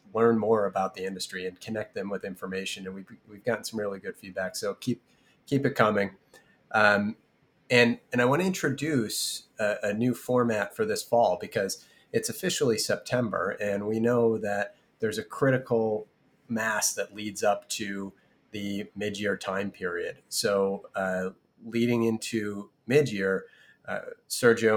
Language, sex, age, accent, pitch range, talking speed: English, male, 30-49, American, 100-115 Hz, 155 wpm